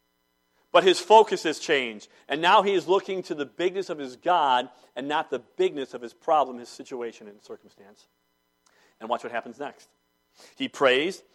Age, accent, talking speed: 50-69, American, 180 wpm